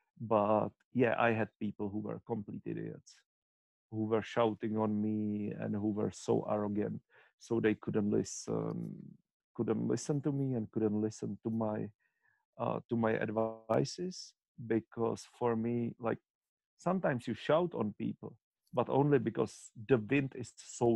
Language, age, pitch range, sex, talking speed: Czech, 50-69, 110-130 Hz, male, 150 wpm